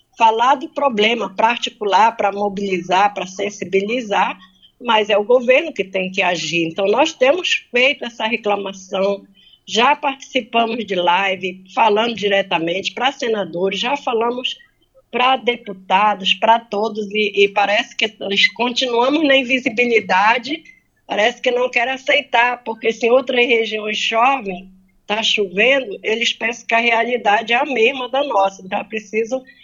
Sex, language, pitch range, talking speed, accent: female, Portuguese, 190-245 Hz, 140 wpm, Brazilian